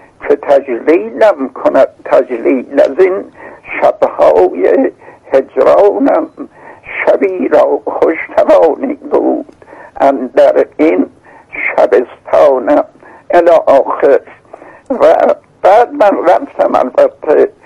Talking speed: 80 wpm